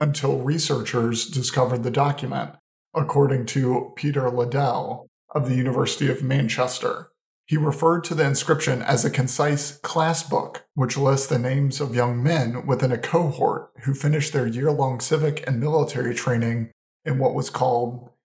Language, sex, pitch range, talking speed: English, male, 125-150 Hz, 150 wpm